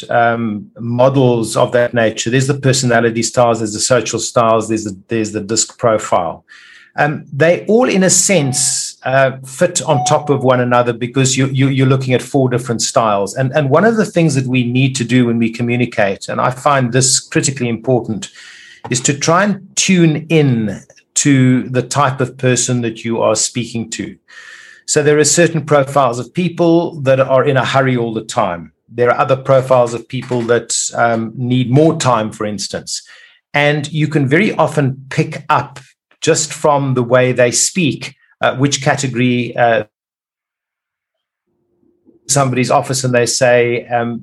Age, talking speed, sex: 50-69, 170 wpm, male